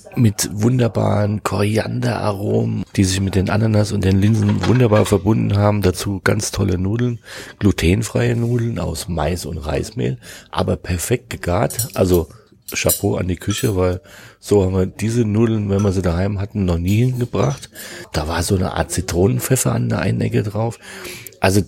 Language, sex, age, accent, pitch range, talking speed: German, male, 40-59, German, 90-115 Hz, 160 wpm